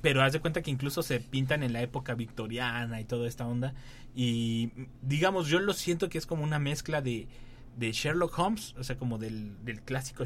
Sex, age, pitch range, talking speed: male, 30-49, 115-130 Hz, 210 wpm